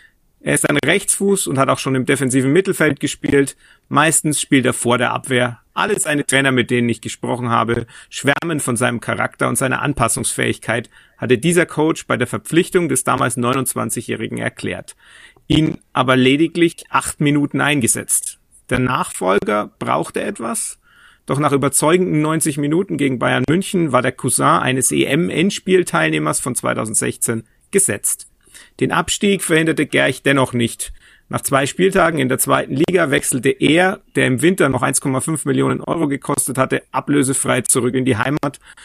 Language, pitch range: German, 125-155 Hz